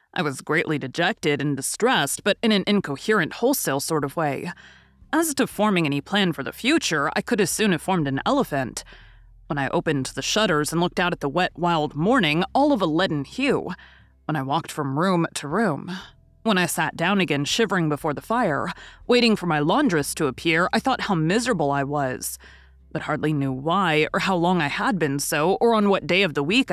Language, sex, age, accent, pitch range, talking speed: English, female, 30-49, American, 145-195 Hz, 210 wpm